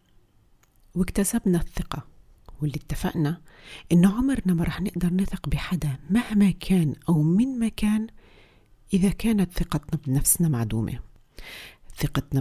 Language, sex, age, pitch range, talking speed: Arabic, female, 40-59, 140-190 Hz, 110 wpm